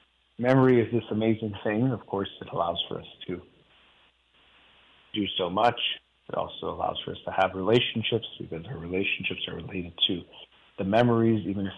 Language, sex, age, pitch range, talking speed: English, male, 40-59, 95-115 Hz, 170 wpm